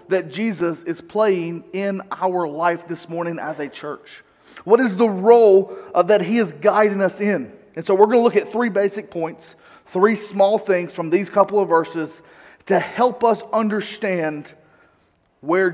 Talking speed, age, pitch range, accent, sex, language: 170 wpm, 30-49, 180-225 Hz, American, male, English